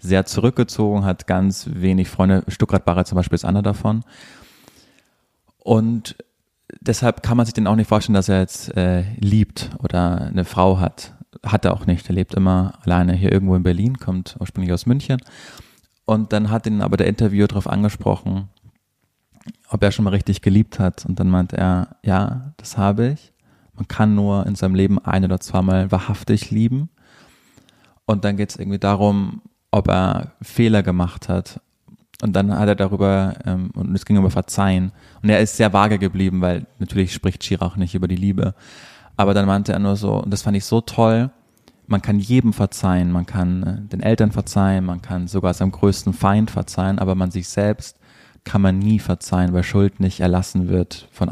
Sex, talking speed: male, 190 wpm